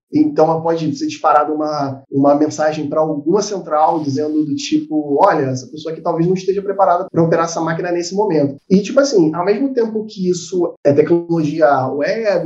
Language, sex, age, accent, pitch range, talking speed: Portuguese, male, 20-39, Brazilian, 150-200 Hz, 185 wpm